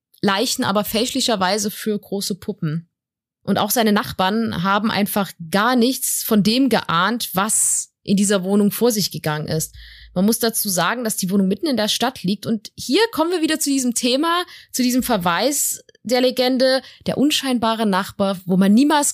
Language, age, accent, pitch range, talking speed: German, 20-39, German, 190-240 Hz, 175 wpm